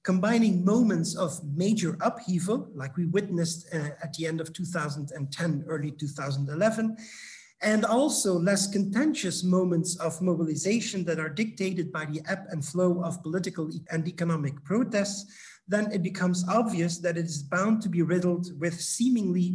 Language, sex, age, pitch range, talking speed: English, male, 50-69, 160-195 Hz, 150 wpm